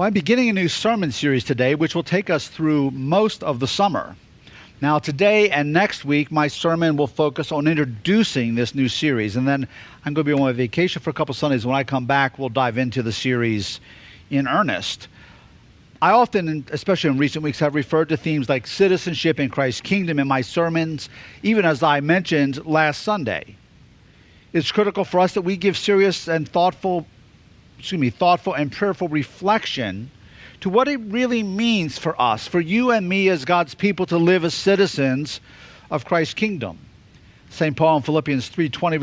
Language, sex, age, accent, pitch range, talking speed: English, male, 50-69, American, 140-190 Hz, 185 wpm